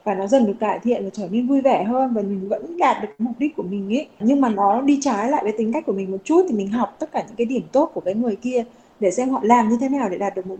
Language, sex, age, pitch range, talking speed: Vietnamese, female, 20-39, 205-265 Hz, 335 wpm